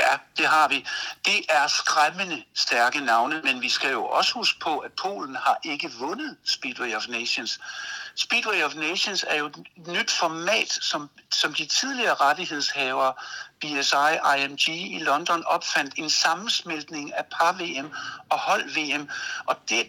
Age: 60-79